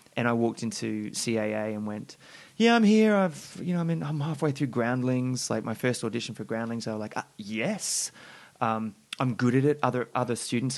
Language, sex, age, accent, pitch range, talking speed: English, male, 20-39, Australian, 110-150 Hz, 210 wpm